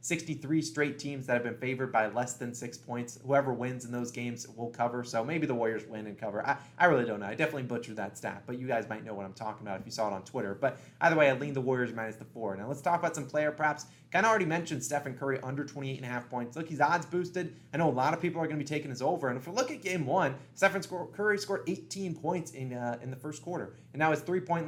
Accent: American